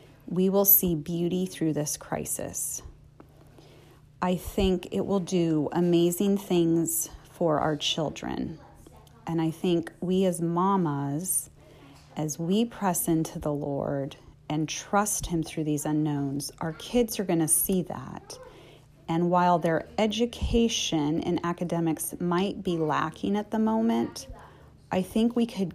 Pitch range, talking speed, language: 155-185 Hz, 135 wpm, English